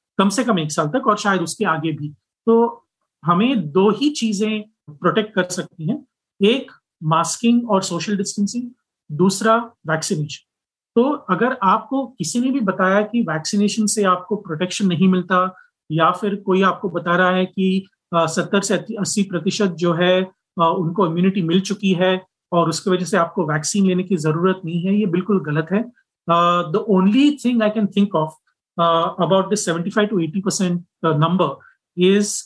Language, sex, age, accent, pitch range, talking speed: Hindi, male, 30-49, native, 175-215 Hz, 165 wpm